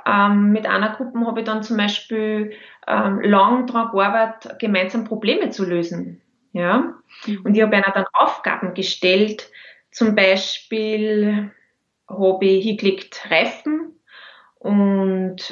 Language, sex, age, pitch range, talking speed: German, female, 20-39, 195-250 Hz, 125 wpm